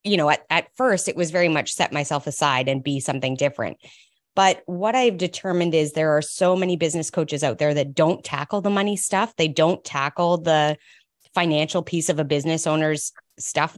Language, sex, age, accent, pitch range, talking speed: English, female, 20-39, American, 150-185 Hz, 200 wpm